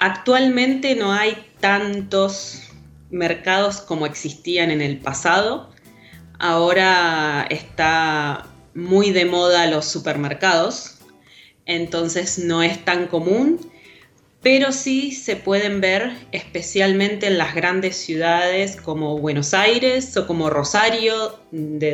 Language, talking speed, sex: English, 105 wpm, female